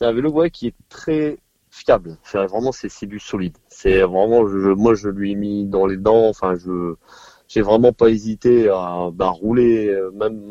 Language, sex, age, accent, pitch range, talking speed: French, male, 30-49, French, 100-125 Hz, 200 wpm